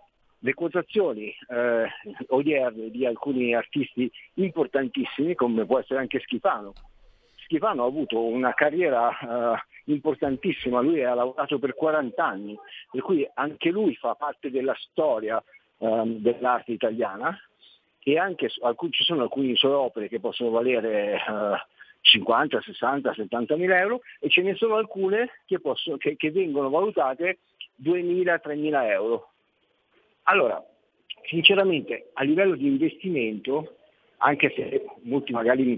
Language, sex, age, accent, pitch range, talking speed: Italian, male, 50-69, native, 120-185 Hz, 130 wpm